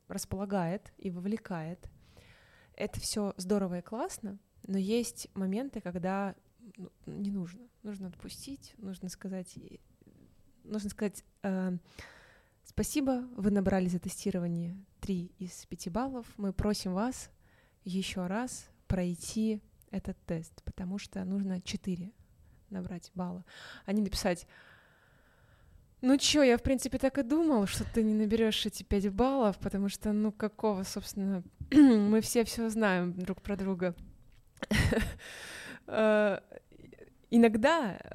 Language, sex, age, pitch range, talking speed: Russian, female, 20-39, 185-220 Hz, 120 wpm